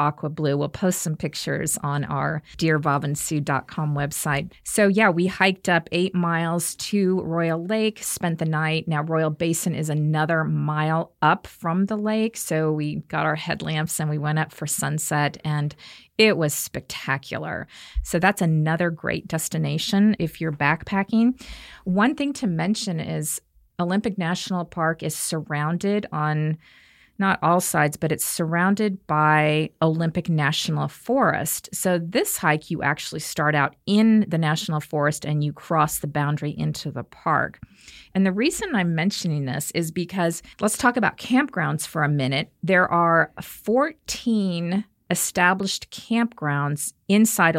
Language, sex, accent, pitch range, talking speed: English, female, American, 150-190 Hz, 150 wpm